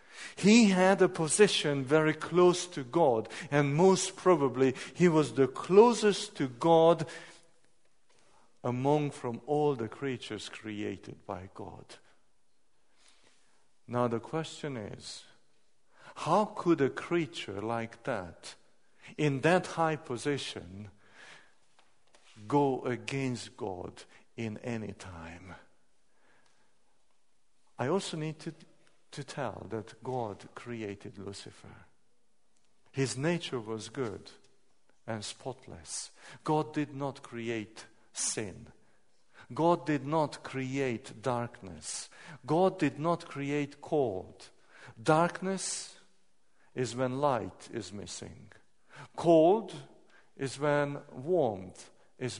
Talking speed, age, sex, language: 100 wpm, 50-69, male, Danish